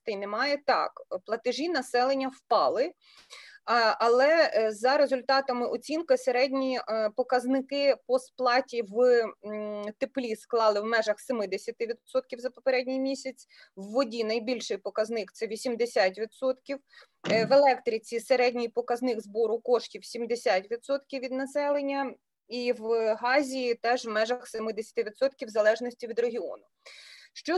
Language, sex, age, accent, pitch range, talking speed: Ukrainian, female, 20-39, native, 225-270 Hz, 110 wpm